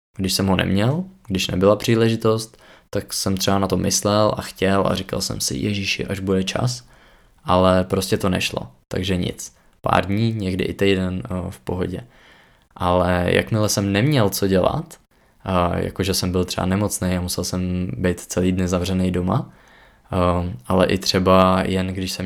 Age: 20-39